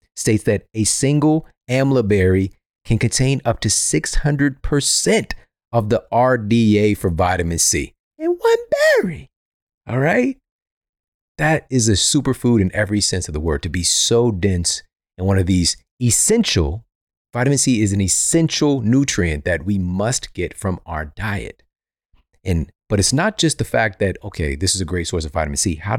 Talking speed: 165 wpm